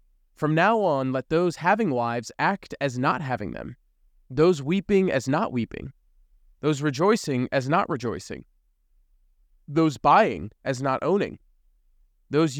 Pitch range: 115-155 Hz